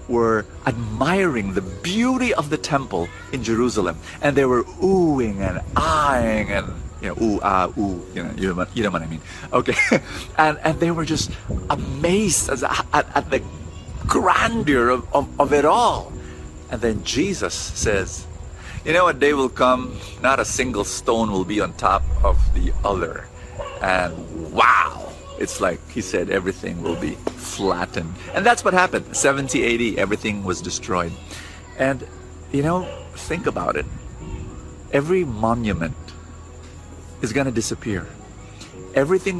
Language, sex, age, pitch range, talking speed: English, male, 50-69, 90-140 Hz, 155 wpm